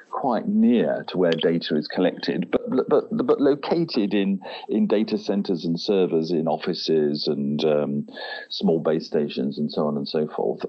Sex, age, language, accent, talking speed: male, 50-69, English, British, 170 wpm